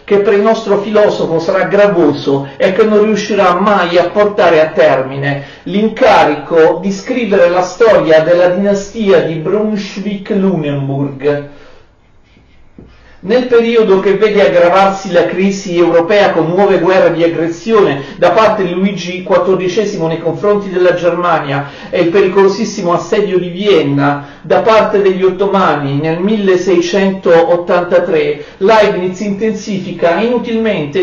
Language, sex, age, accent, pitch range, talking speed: Italian, male, 50-69, native, 165-200 Hz, 120 wpm